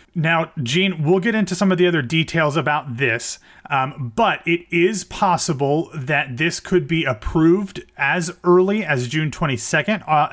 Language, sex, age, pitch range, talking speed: English, male, 30-49, 130-170 Hz, 165 wpm